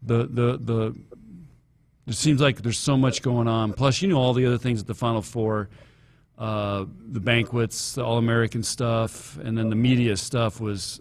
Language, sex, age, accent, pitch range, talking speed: English, male, 40-59, American, 110-130 Hz, 185 wpm